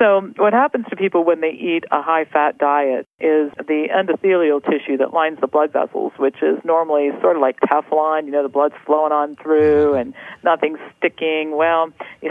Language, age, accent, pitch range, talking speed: English, 50-69, American, 140-170 Hz, 190 wpm